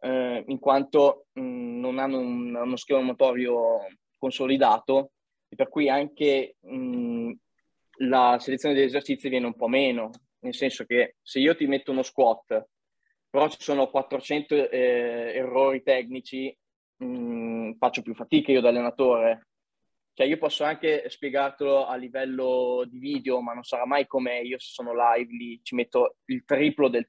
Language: Italian